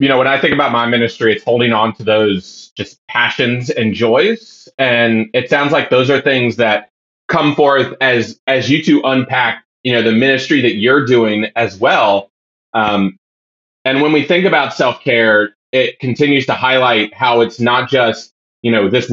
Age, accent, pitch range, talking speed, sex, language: 30-49, American, 120-155 Hz, 185 wpm, male, English